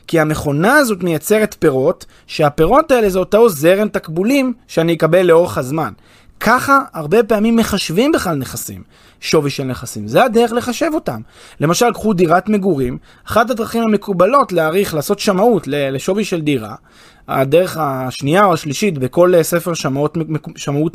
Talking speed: 140 wpm